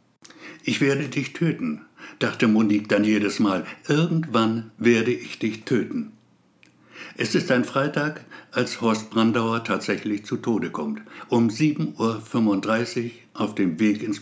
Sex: male